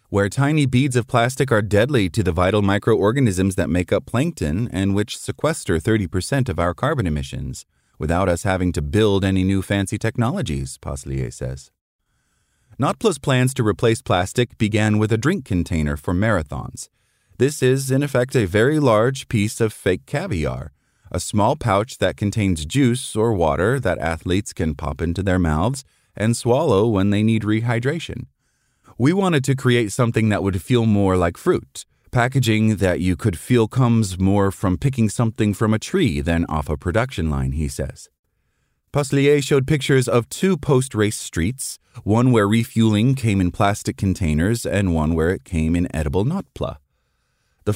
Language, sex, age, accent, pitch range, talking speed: English, male, 30-49, American, 90-125 Hz, 165 wpm